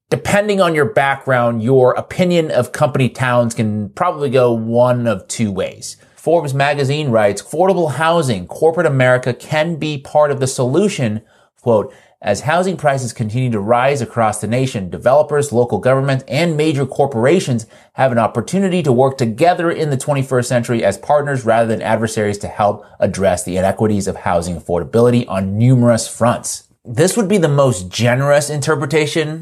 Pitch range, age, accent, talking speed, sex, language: 115-150 Hz, 30-49, American, 160 wpm, male, English